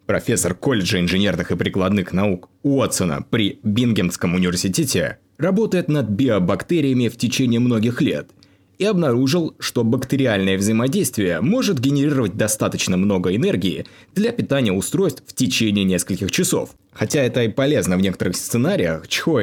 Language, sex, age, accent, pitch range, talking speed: Russian, male, 20-39, native, 100-150 Hz, 130 wpm